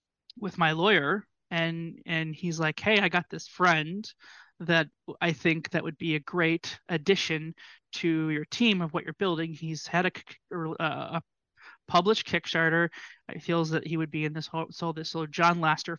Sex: male